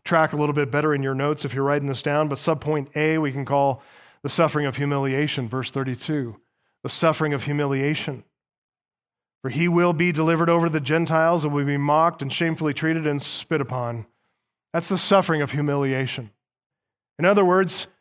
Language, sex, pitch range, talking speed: English, male, 145-185 Hz, 185 wpm